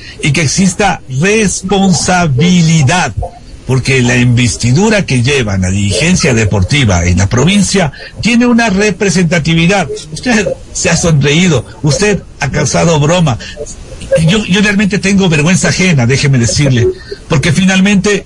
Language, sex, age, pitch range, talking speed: Spanish, male, 60-79, 140-185 Hz, 120 wpm